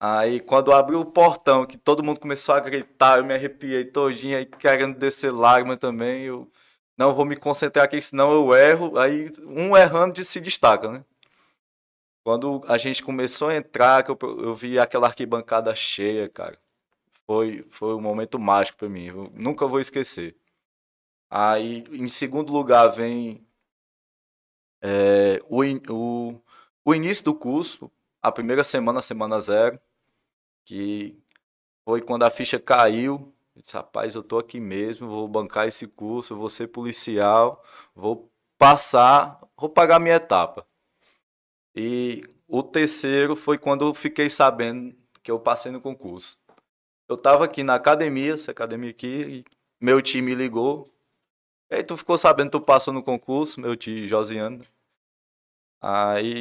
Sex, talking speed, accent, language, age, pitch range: male, 150 wpm, Brazilian, Portuguese, 20-39, 110-140 Hz